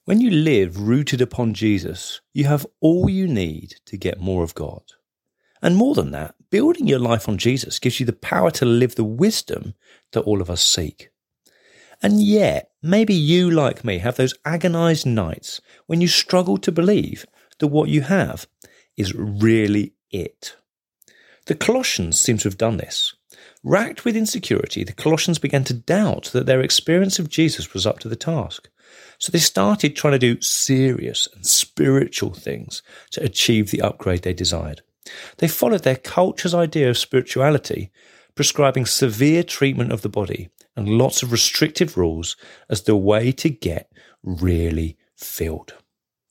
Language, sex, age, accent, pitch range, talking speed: English, male, 40-59, British, 105-165 Hz, 165 wpm